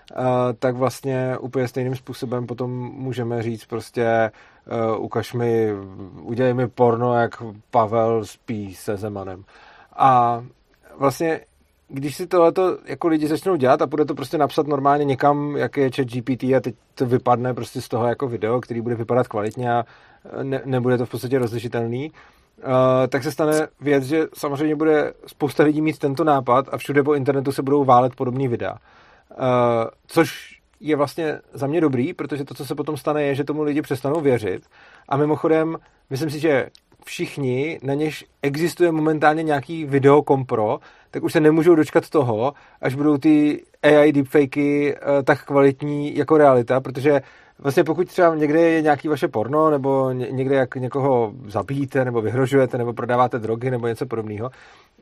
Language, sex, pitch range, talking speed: Czech, male, 125-150 Hz, 165 wpm